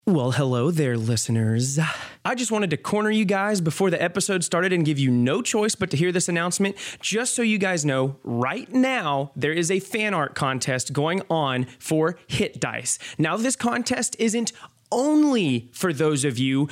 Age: 20-39